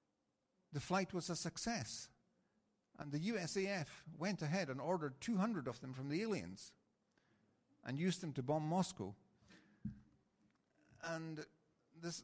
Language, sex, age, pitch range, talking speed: Italian, male, 50-69, 115-170 Hz, 125 wpm